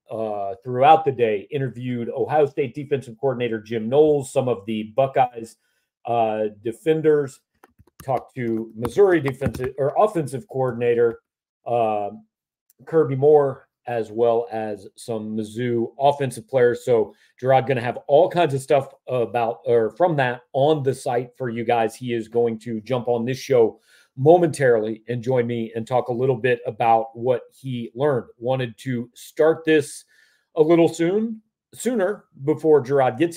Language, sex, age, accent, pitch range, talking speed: English, male, 40-59, American, 120-155 Hz, 155 wpm